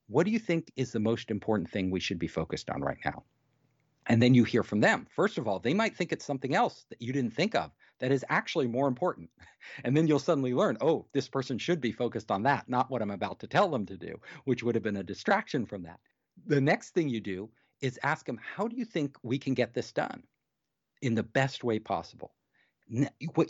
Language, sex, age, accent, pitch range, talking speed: English, male, 50-69, American, 120-165 Hz, 240 wpm